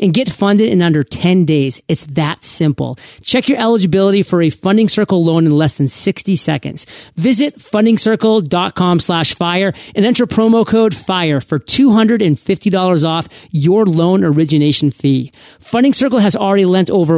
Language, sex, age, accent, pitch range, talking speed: English, male, 40-59, American, 165-220 Hz, 155 wpm